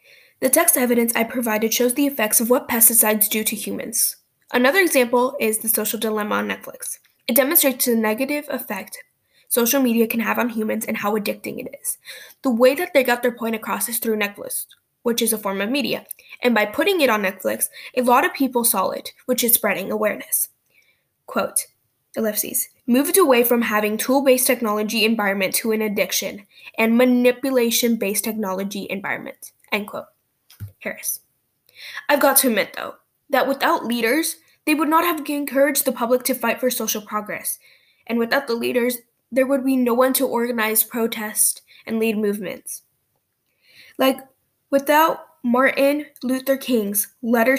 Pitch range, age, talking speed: 220-270 Hz, 10-29, 165 wpm